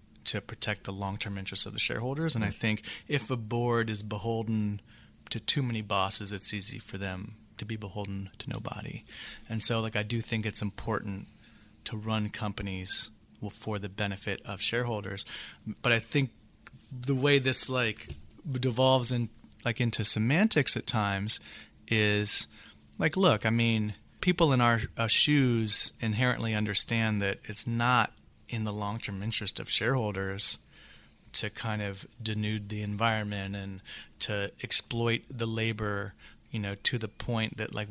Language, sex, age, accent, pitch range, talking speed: English, male, 30-49, American, 105-125 Hz, 155 wpm